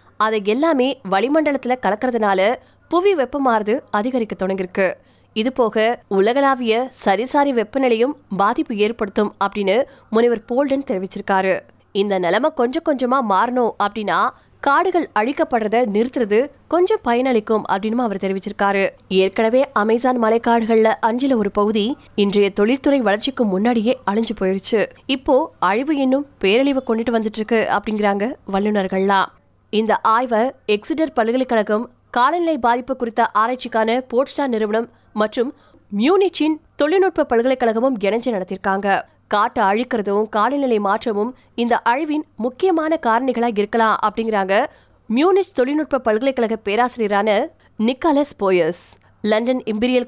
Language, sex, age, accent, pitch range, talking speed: Tamil, female, 20-39, native, 210-260 Hz, 70 wpm